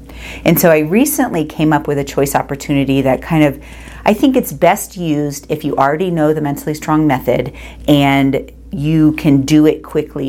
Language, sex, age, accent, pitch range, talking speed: English, female, 40-59, American, 135-155 Hz, 185 wpm